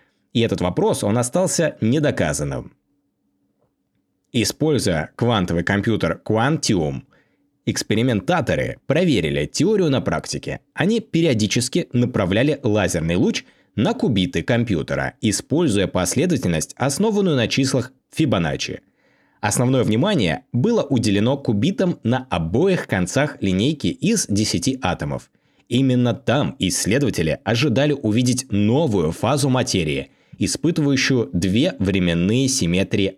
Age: 20-39